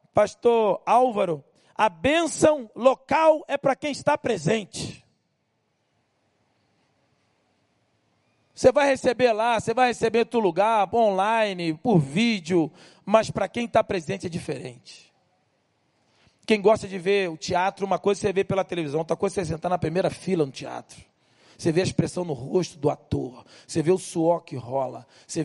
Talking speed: 155 wpm